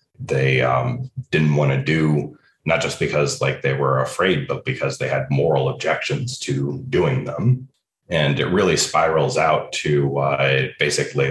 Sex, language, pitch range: male, English, 70-75 Hz